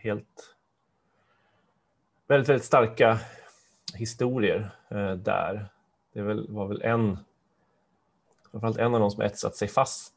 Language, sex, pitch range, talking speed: Swedish, male, 95-110 Hz, 100 wpm